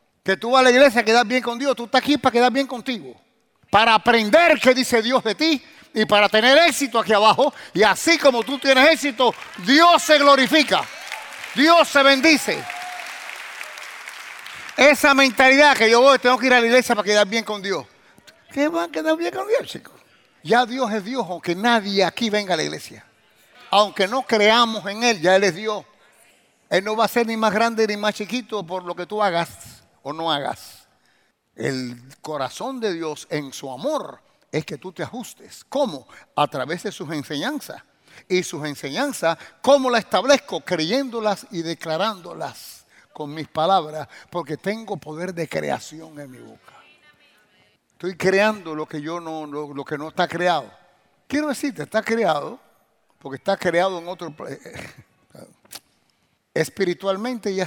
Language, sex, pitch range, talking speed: English, male, 170-255 Hz, 175 wpm